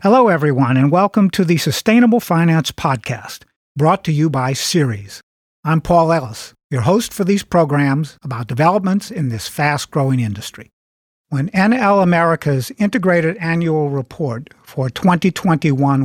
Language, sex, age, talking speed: English, male, 50-69, 135 wpm